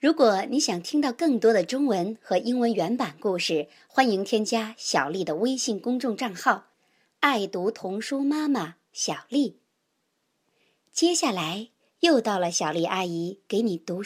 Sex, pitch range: male, 190-270 Hz